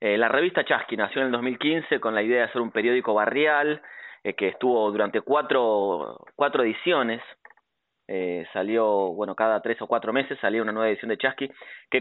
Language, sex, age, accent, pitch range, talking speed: Spanish, male, 30-49, Argentinian, 100-125 Hz, 190 wpm